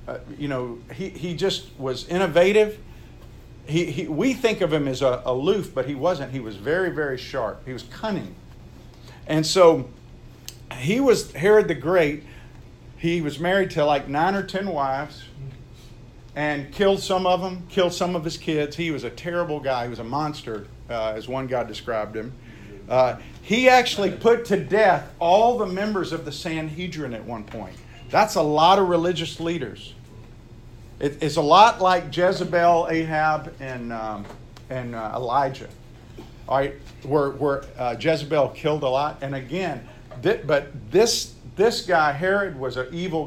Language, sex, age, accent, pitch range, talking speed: English, male, 50-69, American, 125-175 Hz, 165 wpm